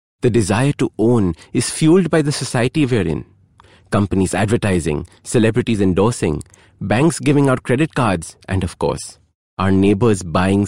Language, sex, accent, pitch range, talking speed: English, male, Indian, 90-130 Hz, 150 wpm